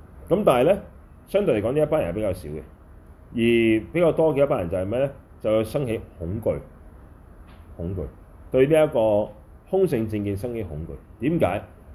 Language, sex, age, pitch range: Chinese, male, 30-49, 80-115 Hz